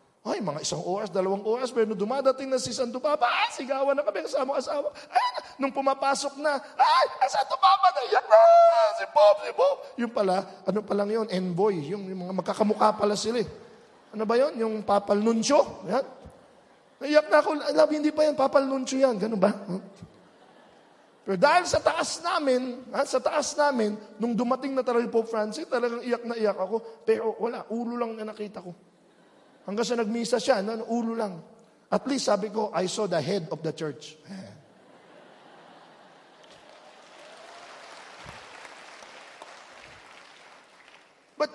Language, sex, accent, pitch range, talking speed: English, male, Filipino, 195-275 Hz, 155 wpm